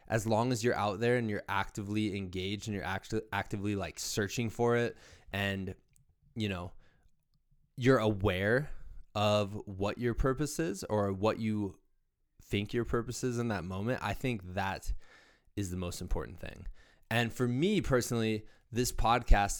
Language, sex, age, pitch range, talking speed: English, male, 20-39, 95-130 Hz, 160 wpm